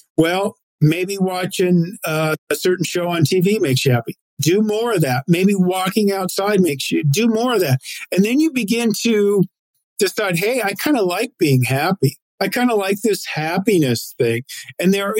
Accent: American